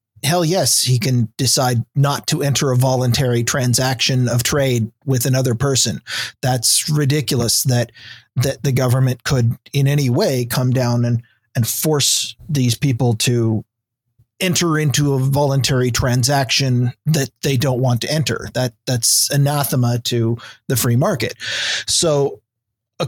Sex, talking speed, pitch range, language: male, 140 wpm, 120-150 Hz, English